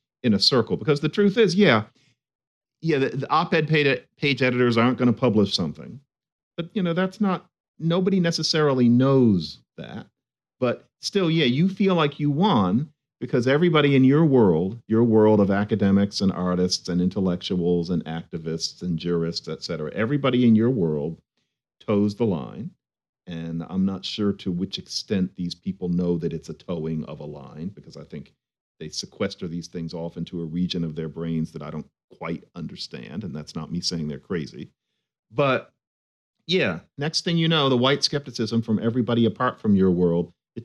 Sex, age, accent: male, 50-69, American